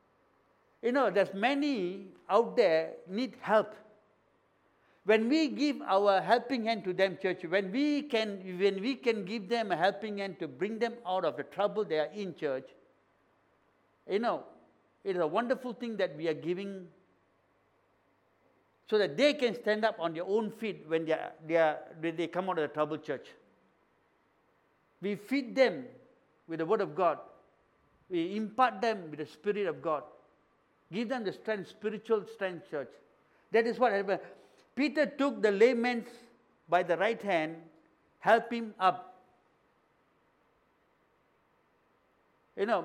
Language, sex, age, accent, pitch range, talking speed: English, male, 60-79, Indian, 185-240 Hz, 155 wpm